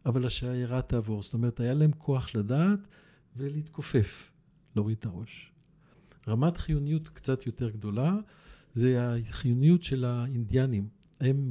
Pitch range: 110-150 Hz